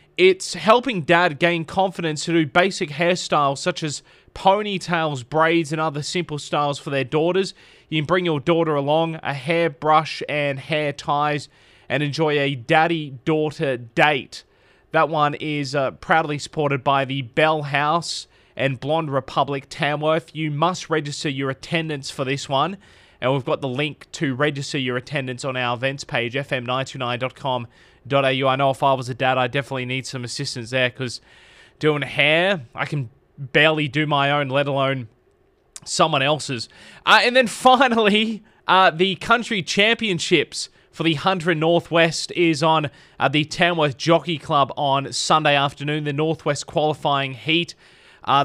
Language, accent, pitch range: English, Australian, 135-165 Hz